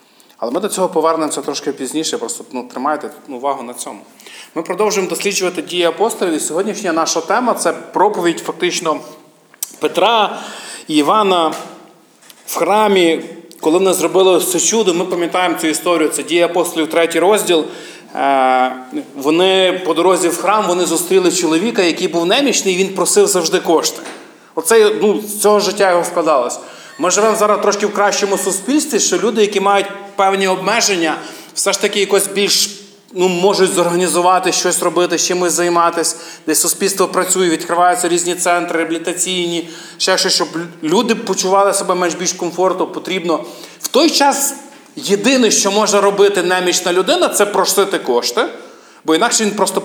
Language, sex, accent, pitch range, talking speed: Ukrainian, male, native, 170-200 Hz, 150 wpm